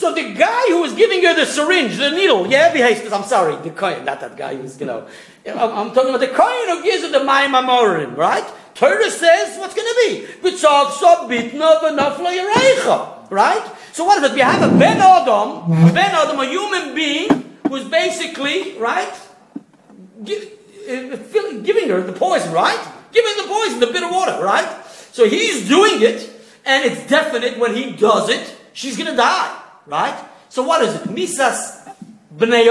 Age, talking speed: 50-69, 180 wpm